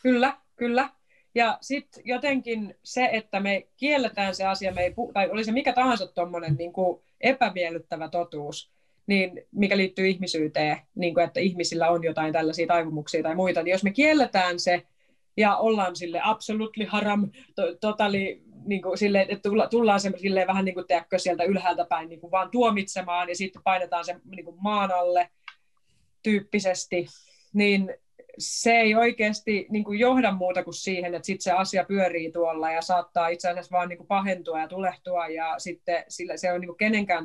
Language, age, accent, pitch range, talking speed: Finnish, 30-49, native, 175-205 Hz, 165 wpm